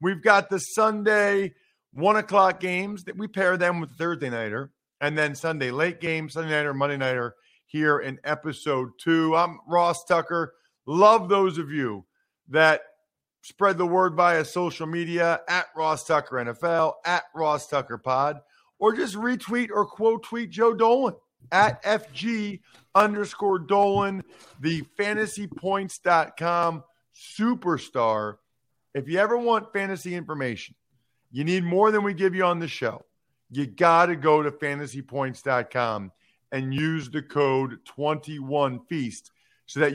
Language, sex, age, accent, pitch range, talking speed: English, male, 50-69, American, 135-180 Hz, 140 wpm